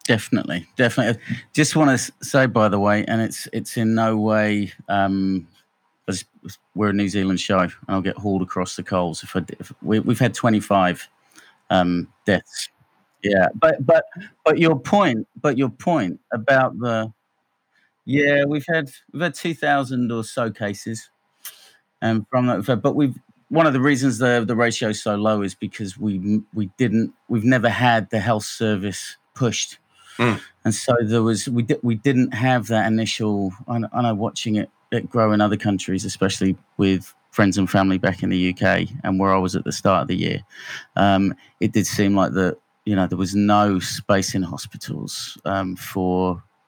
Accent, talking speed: British, 180 wpm